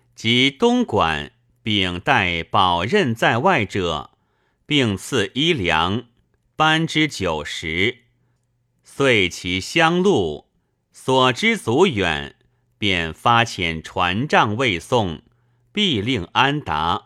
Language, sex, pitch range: Chinese, male, 100-130 Hz